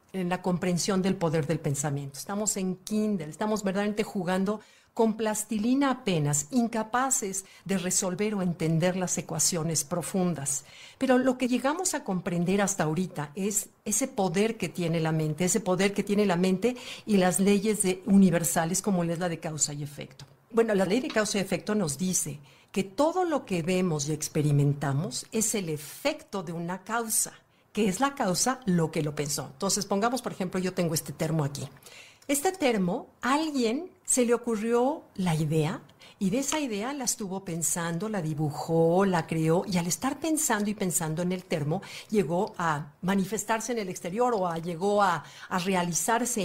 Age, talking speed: 50-69, 175 wpm